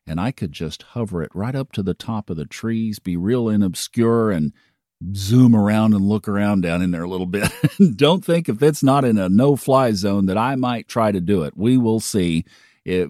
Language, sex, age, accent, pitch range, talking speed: English, male, 50-69, American, 95-130 Hz, 225 wpm